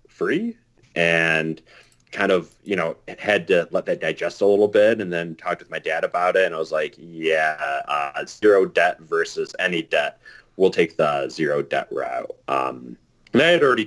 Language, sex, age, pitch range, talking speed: English, male, 30-49, 75-90 Hz, 190 wpm